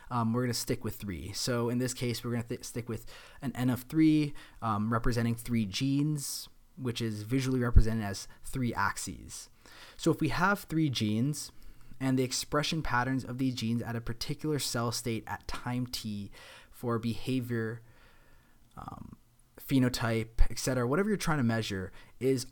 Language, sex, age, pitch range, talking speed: English, male, 20-39, 110-130 Hz, 165 wpm